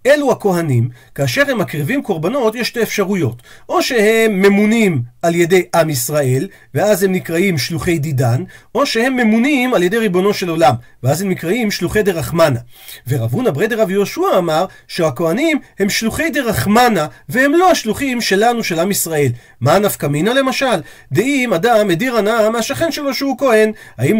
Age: 40-59